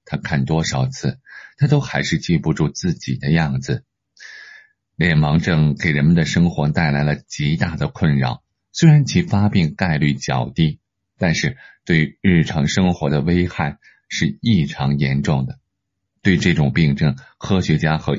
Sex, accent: male, native